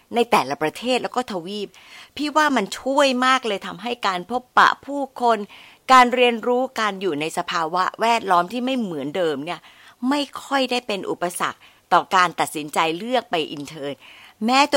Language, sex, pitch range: Thai, female, 180-250 Hz